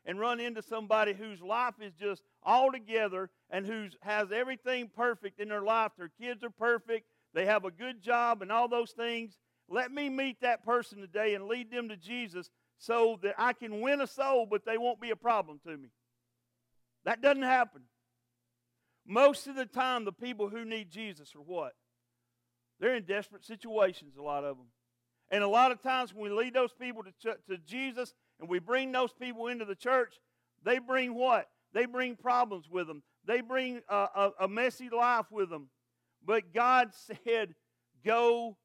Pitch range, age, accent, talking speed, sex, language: 180-245 Hz, 50-69, American, 190 wpm, male, English